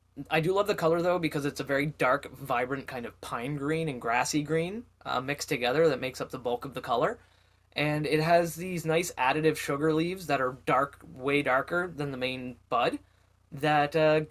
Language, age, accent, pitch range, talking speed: English, 20-39, American, 110-155 Hz, 205 wpm